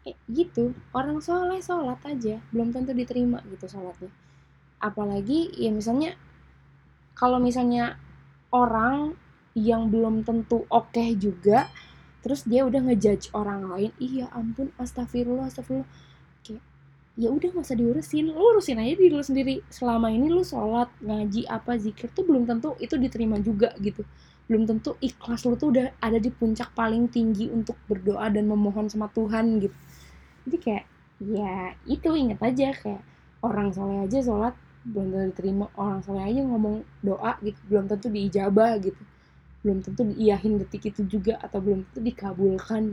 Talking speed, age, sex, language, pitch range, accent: 150 wpm, 10-29, female, Indonesian, 200-245 Hz, native